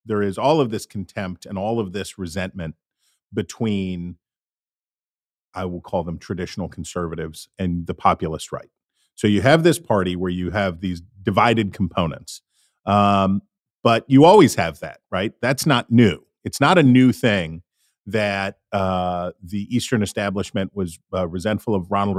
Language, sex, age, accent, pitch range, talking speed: English, male, 40-59, American, 95-125 Hz, 155 wpm